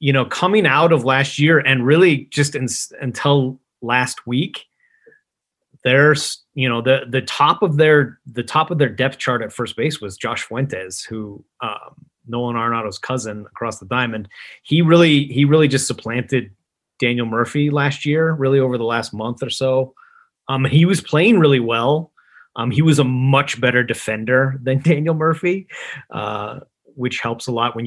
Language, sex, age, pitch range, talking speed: English, male, 30-49, 115-145 Hz, 170 wpm